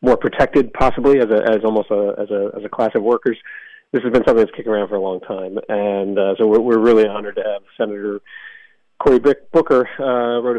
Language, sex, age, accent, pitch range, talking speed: English, male, 40-59, American, 100-120 Hz, 225 wpm